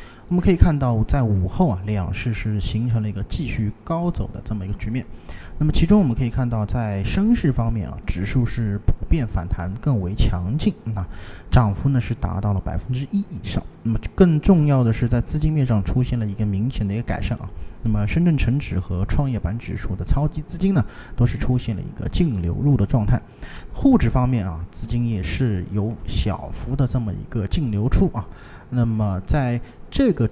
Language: Chinese